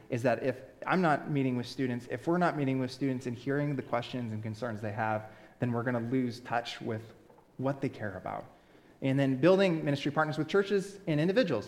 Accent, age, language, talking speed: American, 20-39, English, 210 wpm